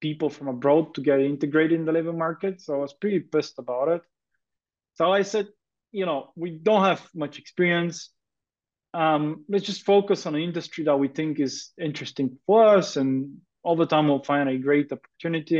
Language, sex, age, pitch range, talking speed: English, male, 20-39, 145-175 Hz, 190 wpm